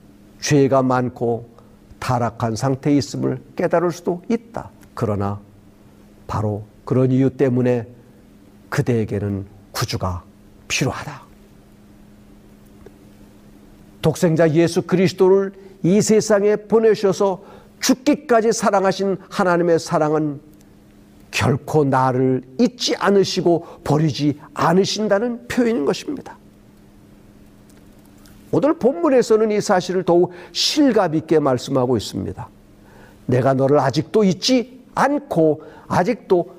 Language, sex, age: Korean, male, 50-69